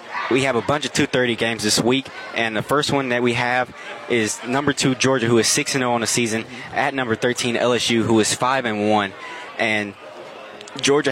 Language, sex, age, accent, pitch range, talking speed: English, male, 20-39, American, 110-130 Hz, 210 wpm